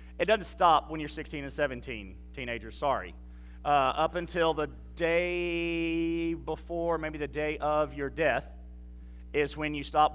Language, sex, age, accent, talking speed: English, male, 40-59, American, 155 wpm